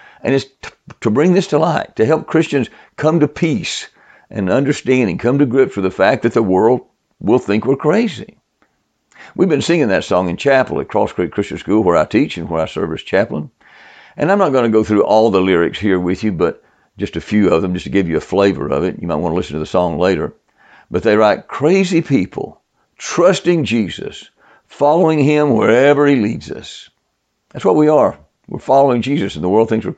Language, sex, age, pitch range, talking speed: English, male, 60-79, 110-160 Hz, 225 wpm